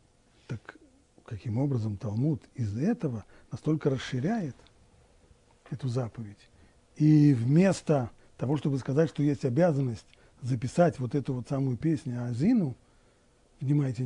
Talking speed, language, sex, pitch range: 115 wpm, Russian, male, 125-185 Hz